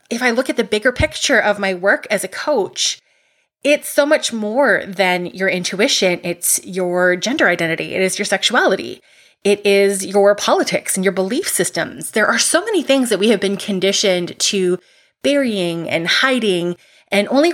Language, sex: English, female